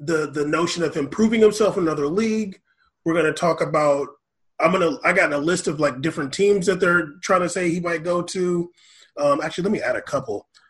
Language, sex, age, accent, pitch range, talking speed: English, male, 20-39, American, 155-205 Hz, 230 wpm